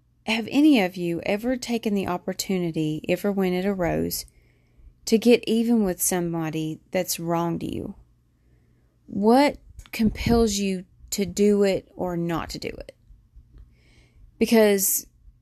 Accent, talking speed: American, 130 wpm